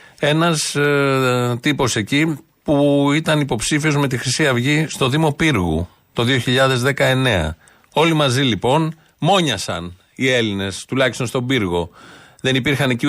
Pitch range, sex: 105-145 Hz, male